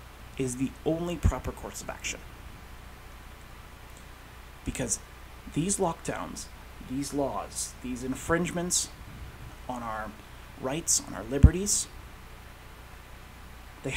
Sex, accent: male, American